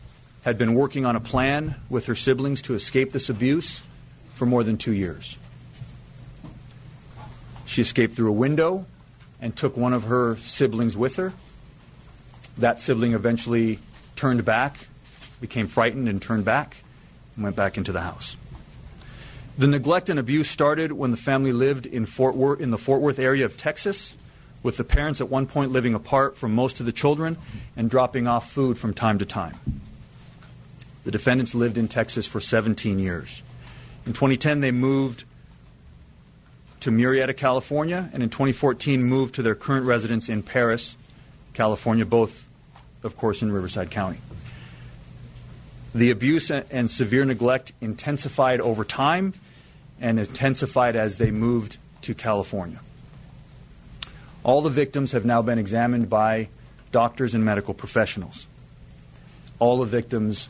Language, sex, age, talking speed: English, male, 40-59, 150 wpm